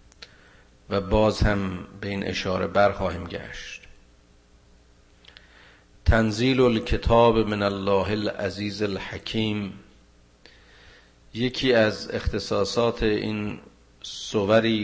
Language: Persian